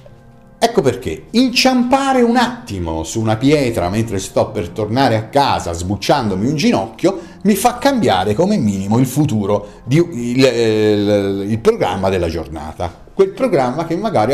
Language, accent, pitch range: Italian, native, 95-155 Hz